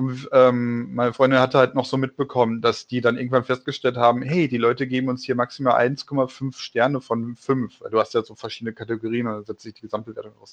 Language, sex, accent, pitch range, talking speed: German, male, German, 120-140 Hz, 210 wpm